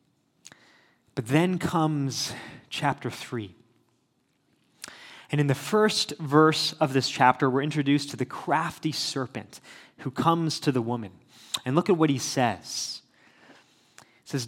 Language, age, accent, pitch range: English, 30-49, American, 130-165 Hz